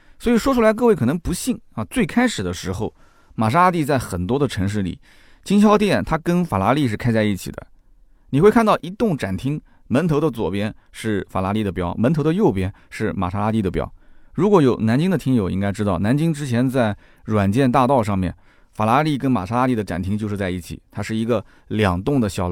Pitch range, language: 100-160 Hz, Chinese